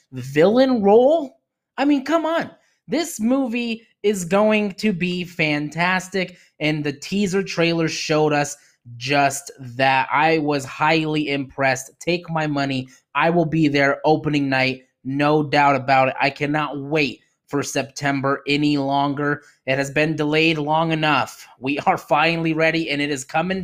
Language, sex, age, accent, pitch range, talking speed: English, male, 20-39, American, 145-215 Hz, 150 wpm